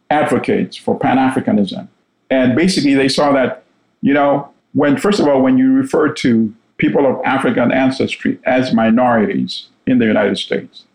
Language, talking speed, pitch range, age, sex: English, 155 wpm, 130-200 Hz, 50-69, male